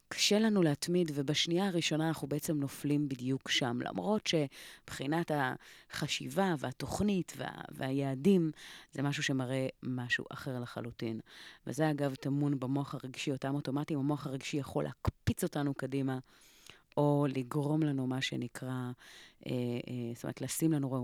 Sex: female